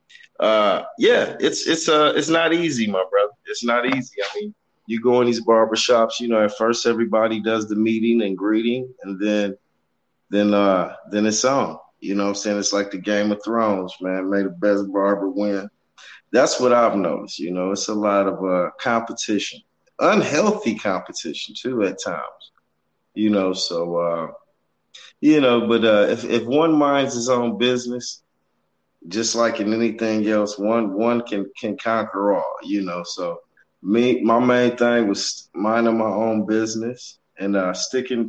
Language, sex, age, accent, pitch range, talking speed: English, male, 30-49, American, 100-120 Hz, 175 wpm